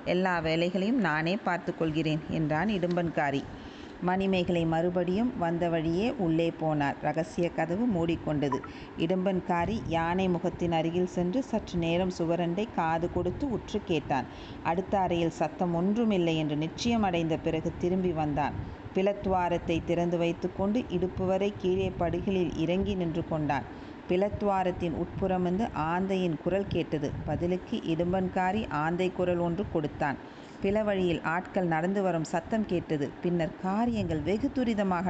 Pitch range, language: 160-190 Hz, Tamil